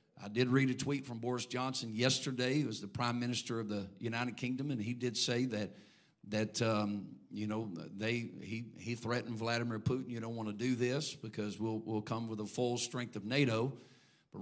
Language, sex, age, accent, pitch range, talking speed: English, male, 50-69, American, 115-140 Hz, 210 wpm